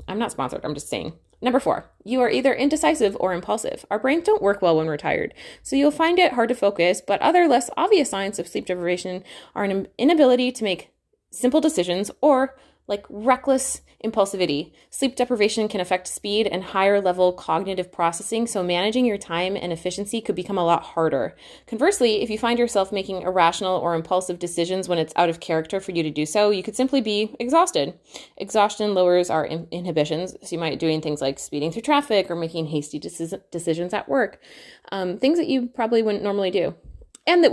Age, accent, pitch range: 20-39, American, 160-220 Hz